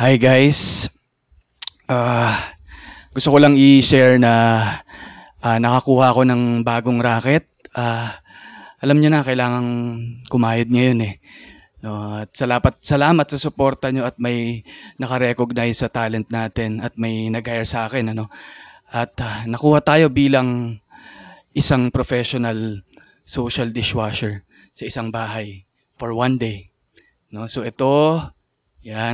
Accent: native